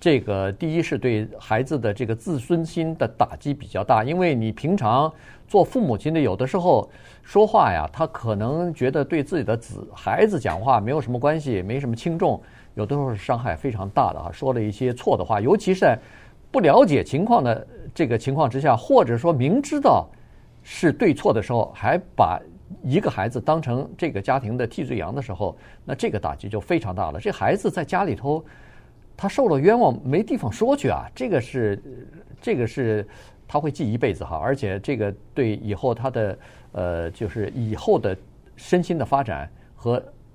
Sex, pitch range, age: male, 110-165 Hz, 50-69